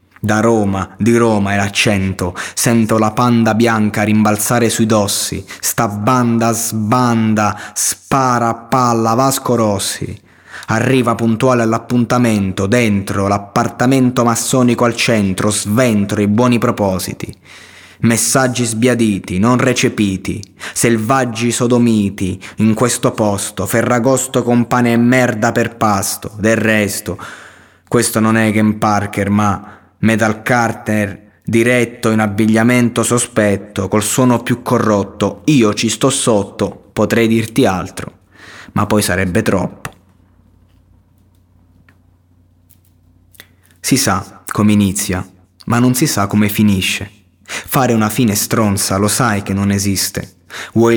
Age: 20-39